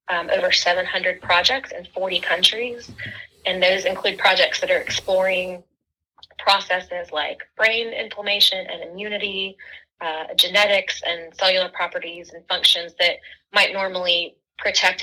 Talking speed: 125 wpm